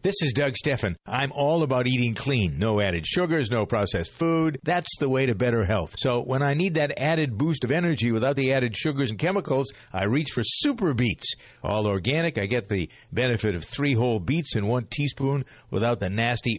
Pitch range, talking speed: 110-140 Hz, 205 wpm